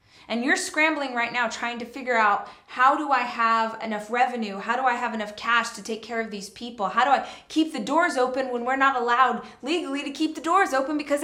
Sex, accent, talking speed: female, American, 240 wpm